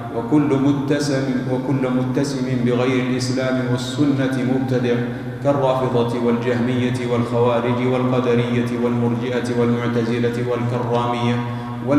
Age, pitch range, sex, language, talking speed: 50-69, 120-130 Hz, male, Arabic, 75 wpm